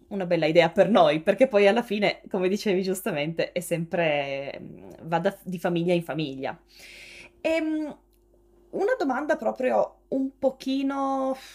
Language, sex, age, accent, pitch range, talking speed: Italian, female, 20-39, native, 165-215 Hz, 125 wpm